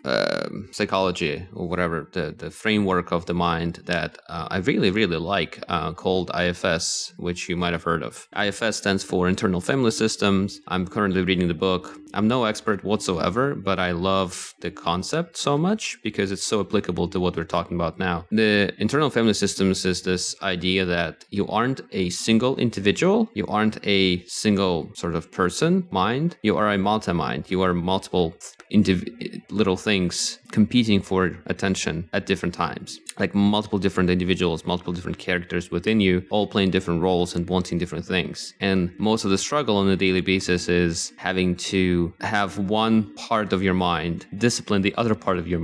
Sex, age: male, 30-49